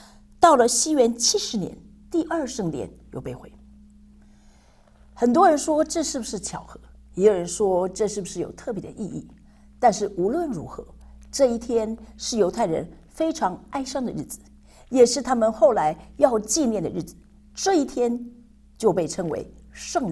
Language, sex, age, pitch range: Chinese, female, 50-69, 165-255 Hz